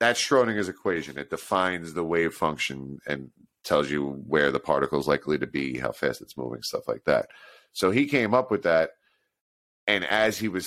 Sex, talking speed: male, 195 wpm